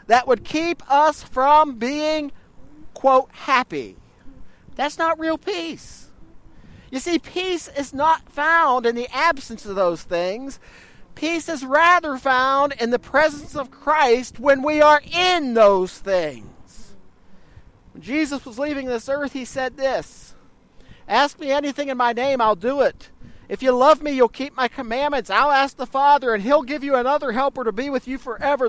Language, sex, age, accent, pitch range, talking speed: English, male, 40-59, American, 255-305 Hz, 165 wpm